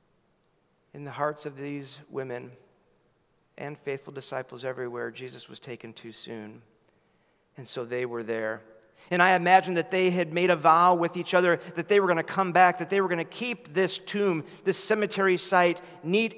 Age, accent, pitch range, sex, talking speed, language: 40-59, American, 155-215 Hz, male, 185 wpm, English